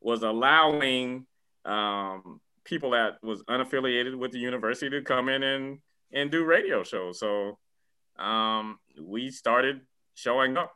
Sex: male